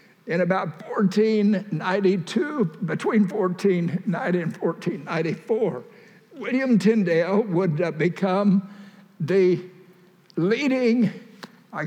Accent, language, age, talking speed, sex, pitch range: American, English, 60-79, 70 wpm, male, 180-215 Hz